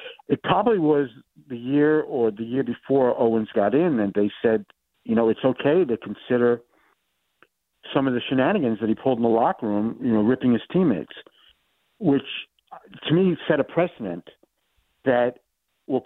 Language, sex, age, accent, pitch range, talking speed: English, male, 50-69, American, 110-135 Hz, 170 wpm